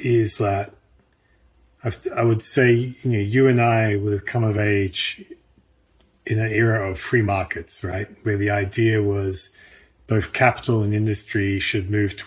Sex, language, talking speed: male, English, 165 wpm